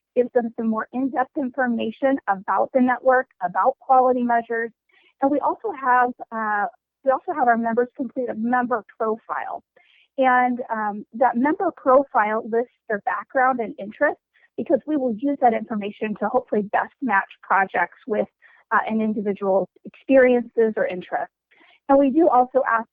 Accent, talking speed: American, 155 wpm